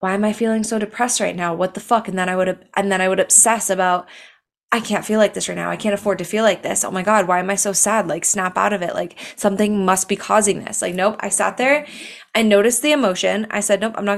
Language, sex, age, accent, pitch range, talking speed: English, female, 20-39, American, 190-225 Hz, 290 wpm